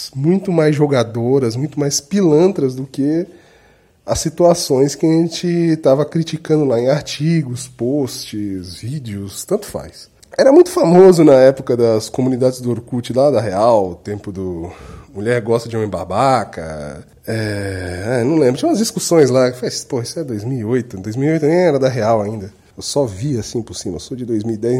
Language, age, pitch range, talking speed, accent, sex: Portuguese, 20-39, 120-175 Hz, 170 wpm, Brazilian, male